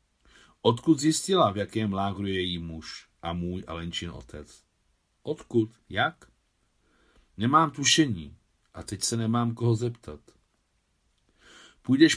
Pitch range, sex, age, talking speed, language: 85-120 Hz, male, 50-69, 120 wpm, Czech